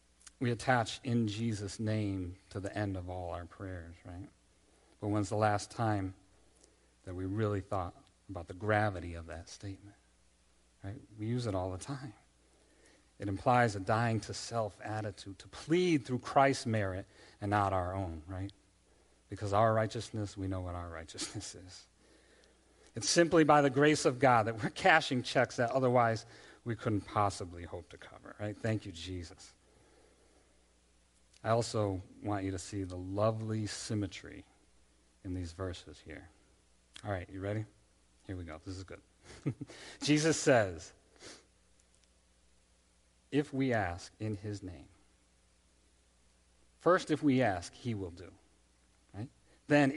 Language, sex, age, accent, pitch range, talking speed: English, male, 40-59, American, 85-115 Hz, 150 wpm